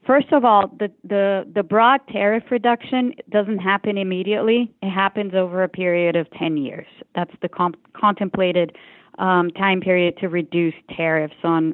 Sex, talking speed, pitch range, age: female, 160 wpm, 170-205 Hz, 40-59